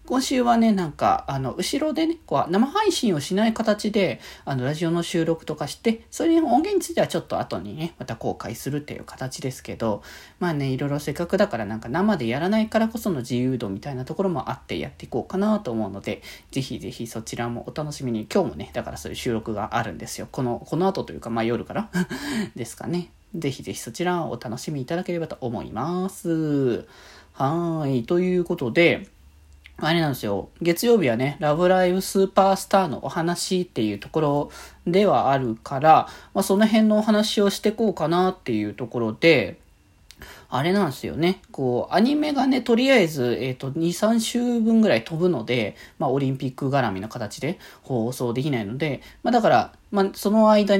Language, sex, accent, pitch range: Japanese, male, native, 125-200 Hz